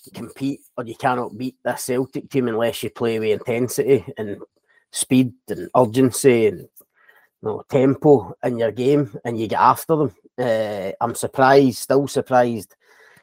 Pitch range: 115-140 Hz